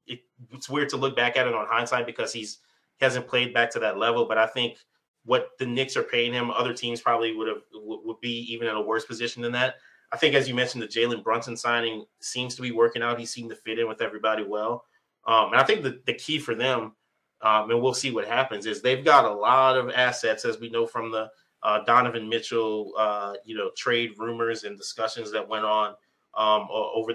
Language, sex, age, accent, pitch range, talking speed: English, male, 20-39, American, 115-130 Hz, 235 wpm